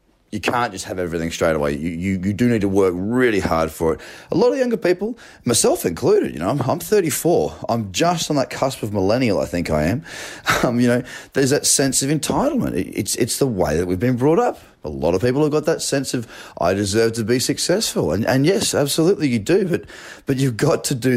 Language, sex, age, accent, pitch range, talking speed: English, male, 30-49, Australian, 90-135 Hz, 240 wpm